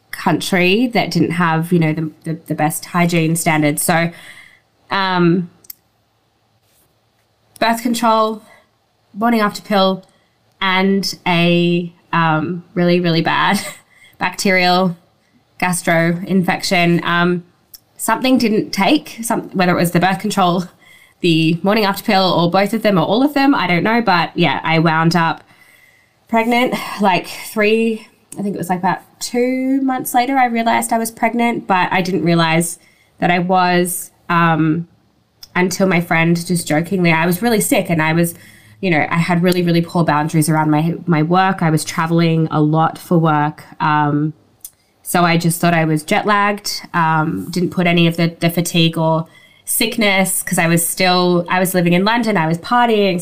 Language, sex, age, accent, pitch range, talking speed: English, female, 20-39, Australian, 160-195 Hz, 165 wpm